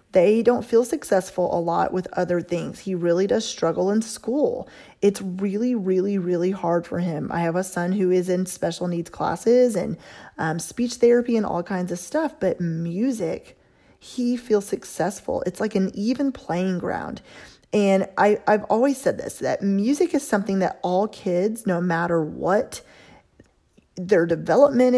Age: 20-39